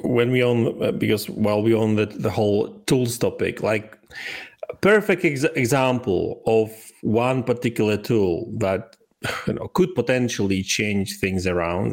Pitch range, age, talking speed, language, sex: 105-125 Hz, 40-59, 145 wpm, English, male